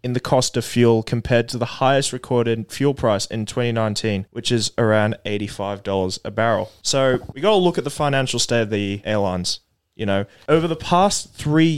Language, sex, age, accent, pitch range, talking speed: English, male, 20-39, Australian, 115-145 Hz, 195 wpm